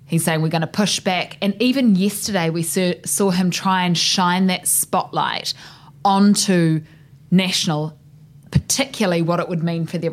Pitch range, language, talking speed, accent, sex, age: 155-195 Hz, English, 160 wpm, Australian, female, 20-39